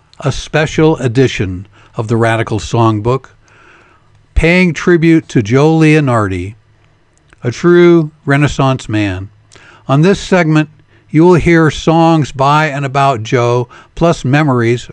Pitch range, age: 120-160 Hz, 60-79